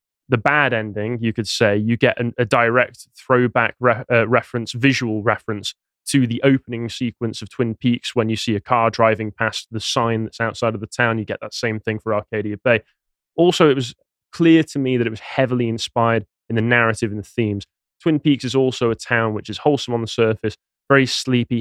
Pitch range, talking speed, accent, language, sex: 110-125 Hz, 215 wpm, British, English, male